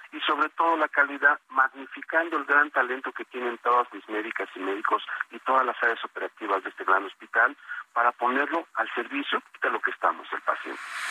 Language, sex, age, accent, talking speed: Spanish, male, 50-69, Mexican, 190 wpm